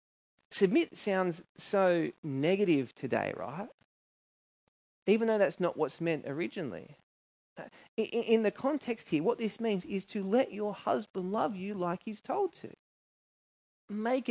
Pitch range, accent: 155-205 Hz, Australian